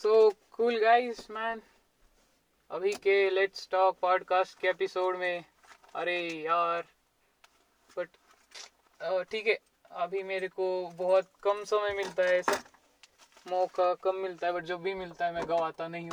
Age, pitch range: 20-39, 175-220 Hz